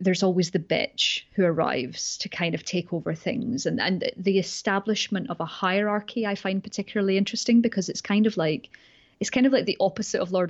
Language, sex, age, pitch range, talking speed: English, female, 30-49, 175-205 Hz, 205 wpm